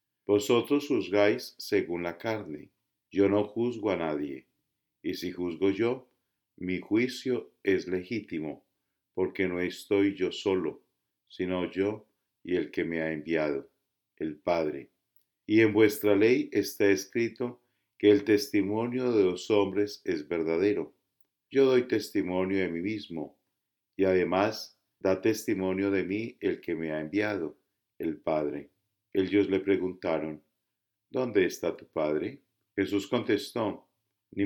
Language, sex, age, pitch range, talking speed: English, male, 50-69, 90-110 Hz, 135 wpm